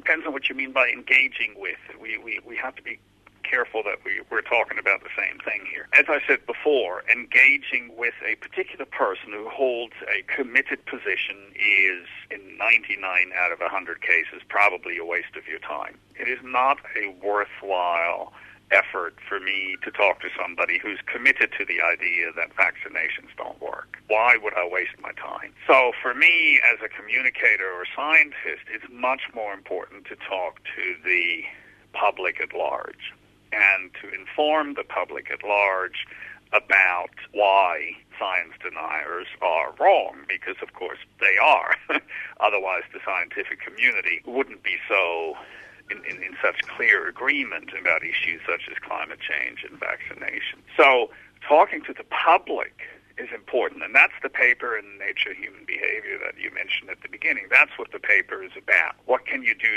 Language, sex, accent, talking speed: English, male, American, 170 wpm